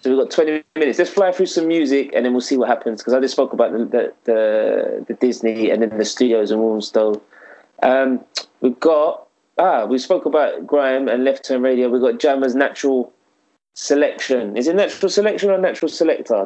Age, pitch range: 20-39, 115-140 Hz